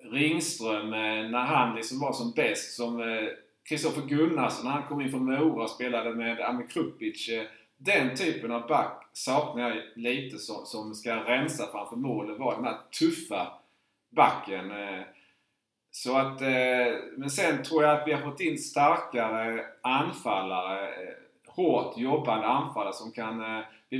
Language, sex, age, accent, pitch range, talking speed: Swedish, male, 30-49, Norwegian, 115-150 Hz, 145 wpm